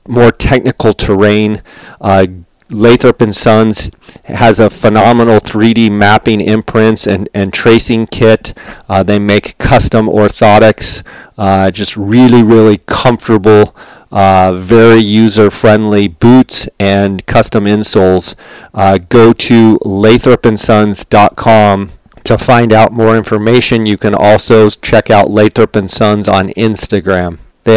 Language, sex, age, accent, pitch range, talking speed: English, male, 40-59, American, 105-115 Hz, 115 wpm